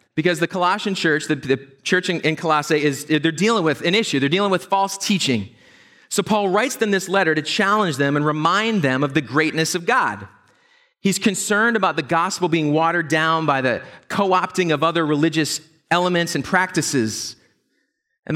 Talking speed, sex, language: 175 wpm, male, English